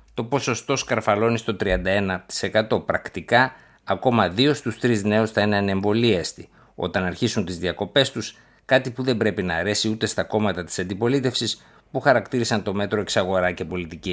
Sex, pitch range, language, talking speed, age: male, 95-125 Hz, Greek, 155 wpm, 50-69